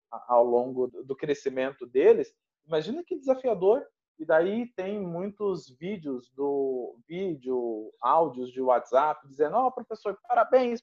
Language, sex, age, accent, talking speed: Portuguese, male, 40-59, Brazilian, 120 wpm